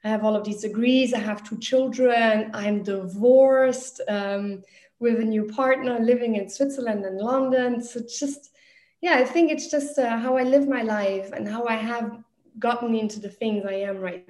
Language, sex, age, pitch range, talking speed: English, female, 20-39, 205-255 Hz, 195 wpm